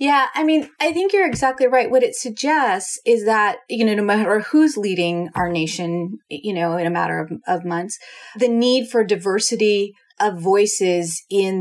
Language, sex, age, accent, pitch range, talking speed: English, female, 30-49, American, 170-215 Hz, 185 wpm